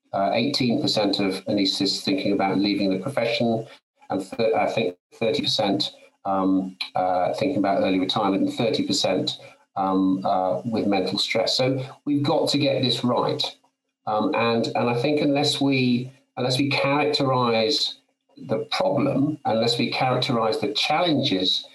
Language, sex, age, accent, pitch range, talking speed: English, male, 50-69, British, 105-145 Hz, 140 wpm